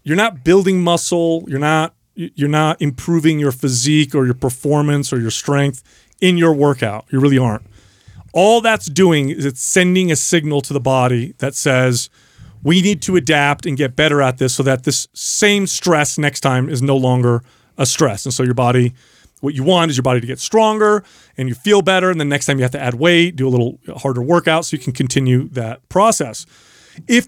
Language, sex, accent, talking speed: English, male, American, 210 wpm